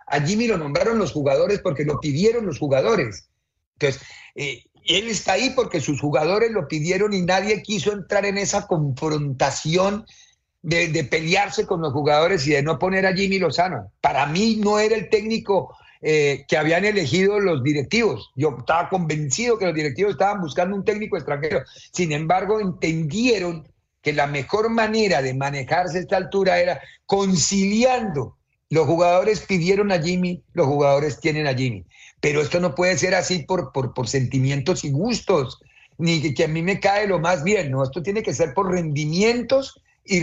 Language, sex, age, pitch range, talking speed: Spanish, male, 50-69, 140-195 Hz, 175 wpm